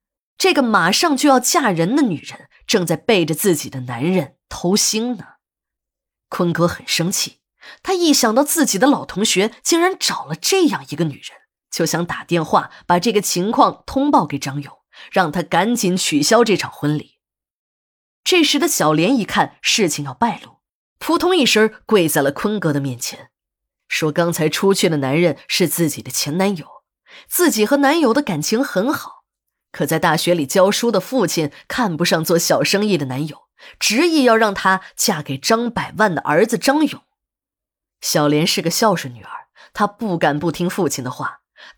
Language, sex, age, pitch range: Chinese, female, 20-39, 160-235 Hz